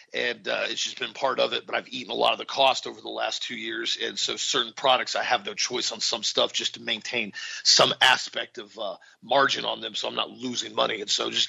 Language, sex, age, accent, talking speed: English, male, 40-59, American, 260 wpm